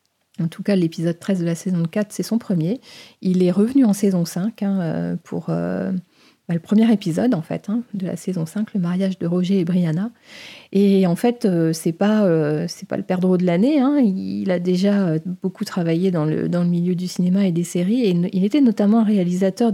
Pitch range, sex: 175-210 Hz, female